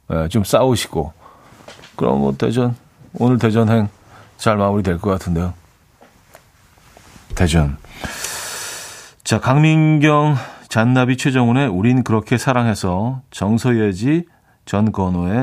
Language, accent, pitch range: Korean, native, 100-135 Hz